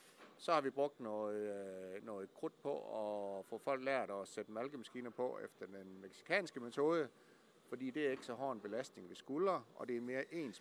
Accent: native